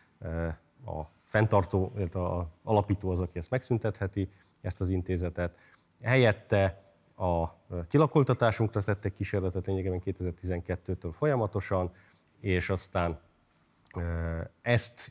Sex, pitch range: male, 85-100 Hz